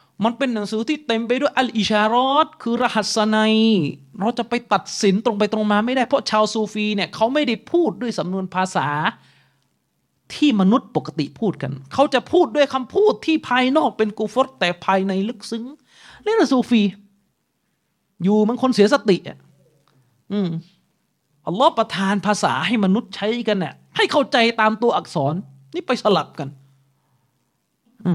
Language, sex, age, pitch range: Thai, male, 30-49, 190-265 Hz